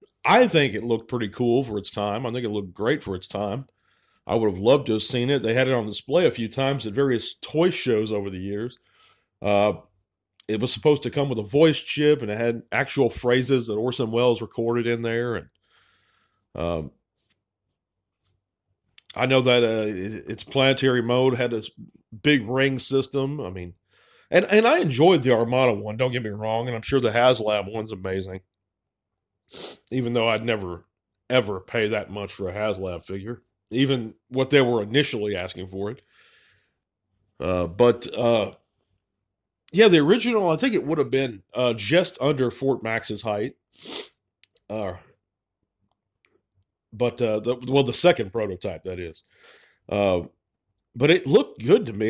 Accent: American